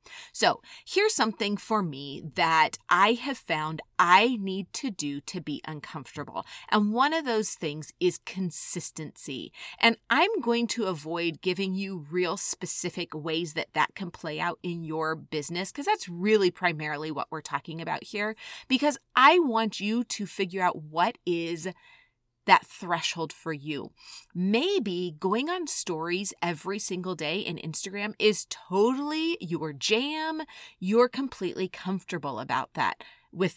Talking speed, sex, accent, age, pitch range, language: 145 wpm, female, American, 30-49, 160-220 Hz, English